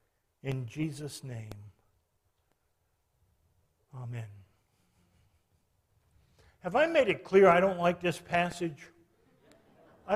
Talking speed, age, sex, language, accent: 90 wpm, 50-69, male, English, American